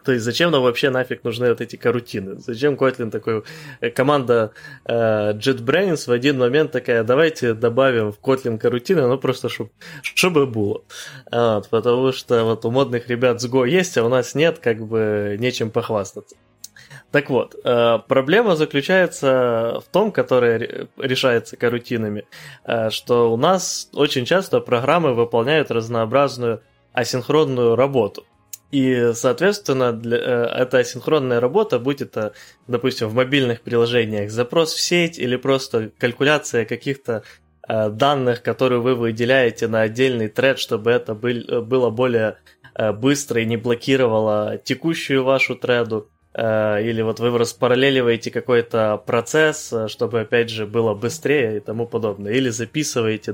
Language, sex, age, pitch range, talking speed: Ukrainian, male, 20-39, 115-135 Hz, 135 wpm